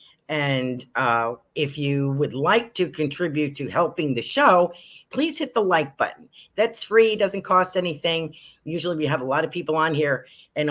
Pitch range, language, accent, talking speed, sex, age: 130-165 Hz, English, American, 180 wpm, female, 50-69